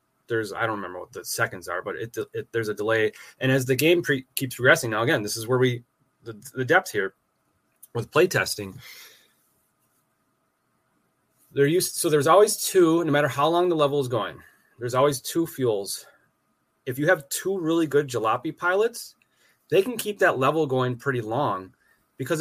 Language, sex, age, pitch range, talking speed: English, male, 30-49, 120-160 Hz, 175 wpm